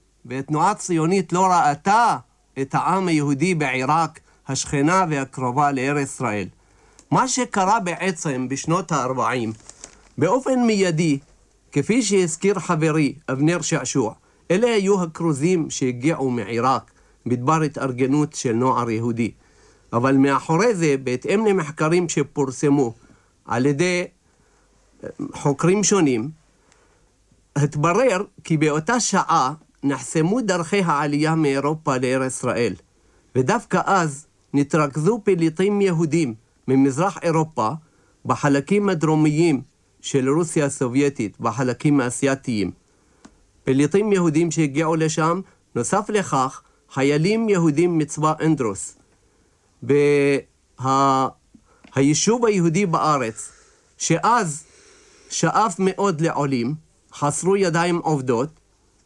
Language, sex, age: Hebrew, male, 50-69